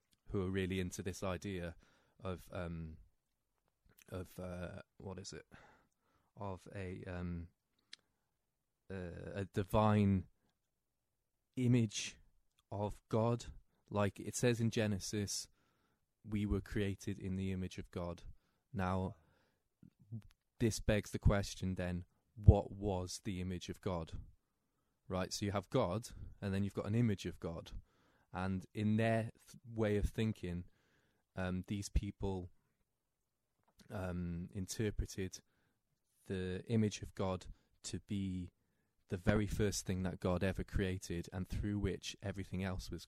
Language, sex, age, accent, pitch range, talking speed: English, male, 20-39, British, 90-105 Hz, 125 wpm